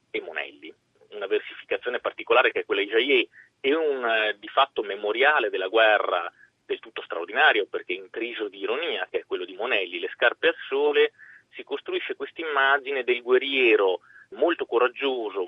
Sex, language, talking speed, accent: male, Italian, 165 wpm, native